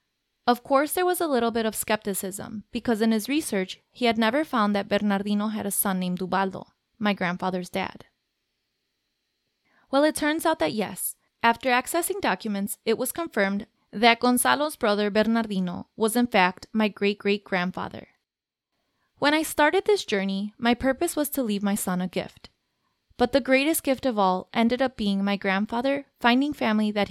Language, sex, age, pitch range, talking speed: Spanish, female, 20-39, 200-245 Hz, 170 wpm